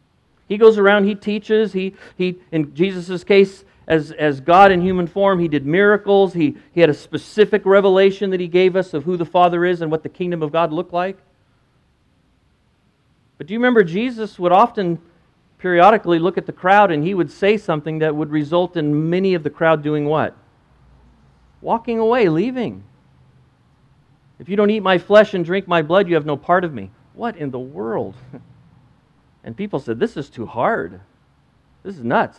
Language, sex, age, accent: English, male, 40-59, American